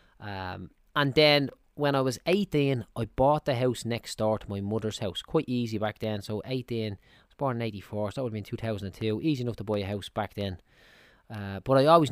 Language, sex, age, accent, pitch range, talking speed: English, male, 20-39, Irish, 105-130 Hz, 230 wpm